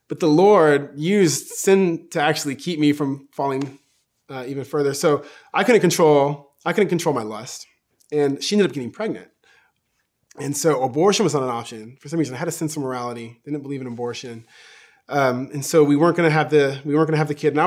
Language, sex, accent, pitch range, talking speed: English, male, American, 130-155 Hz, 225 wpm